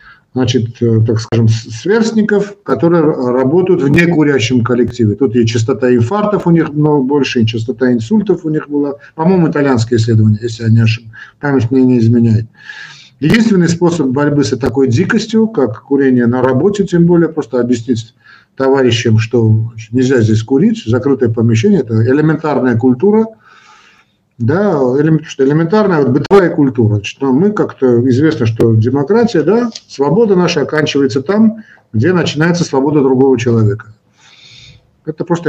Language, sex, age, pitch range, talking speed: Russian, male, 50-69, 115-155 Hz, 140 wpm